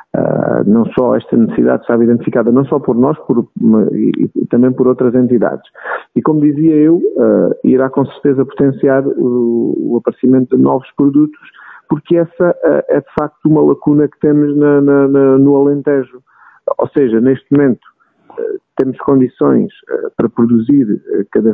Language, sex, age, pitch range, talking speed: Portuguese, male, 50-69, 125-150 Hz, 160 wpm